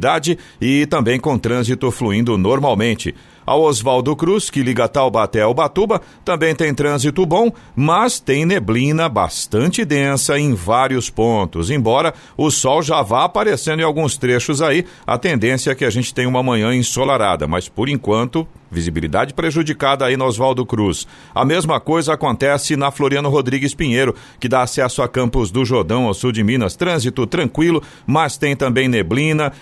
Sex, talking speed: male, 160 wpm